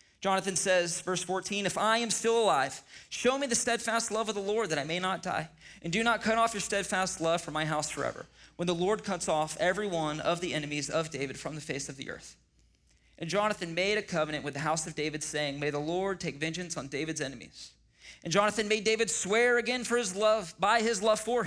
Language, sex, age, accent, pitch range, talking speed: English, male, 30-49, American, 155-210 Hz, 235 wpm